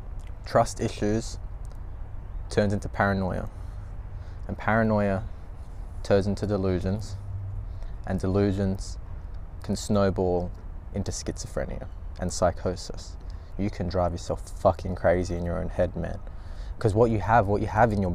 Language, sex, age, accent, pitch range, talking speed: English, male, 20-39, Australian, 90-105 Hz, 125 wpm